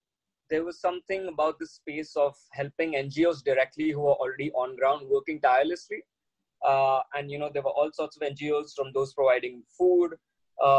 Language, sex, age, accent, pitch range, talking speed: English, male, 20-39, Indian, 135-160 Hz, 180 wpm